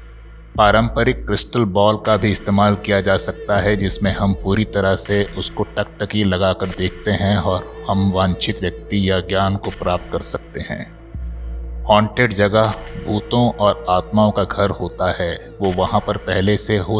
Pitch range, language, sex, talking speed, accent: 95-105 Hz, Hindi, male, 160 wpm, native